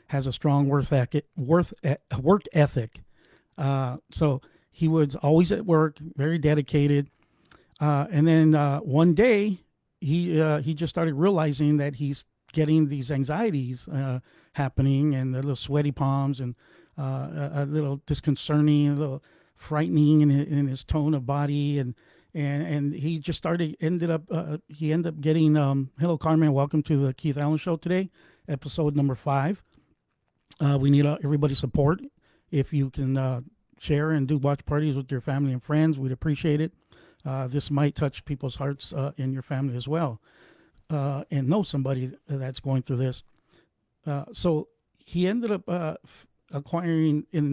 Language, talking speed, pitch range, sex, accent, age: English, 165 wpm, 140-155 Hz, male, American, 50-69